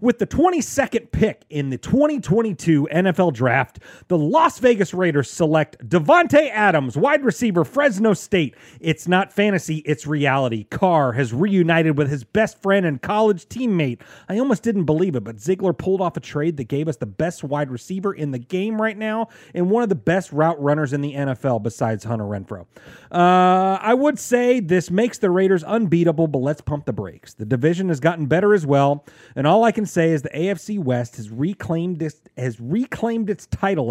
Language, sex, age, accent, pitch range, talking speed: English, male, 30-49, American, 145-205 Hz, 190 wpm